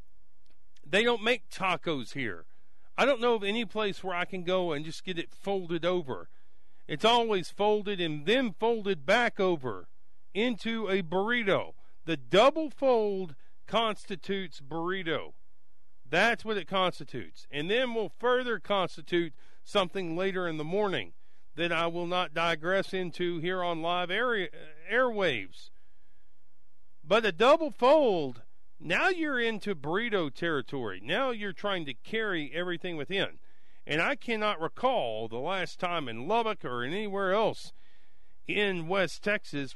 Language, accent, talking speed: English, American, 140 wpm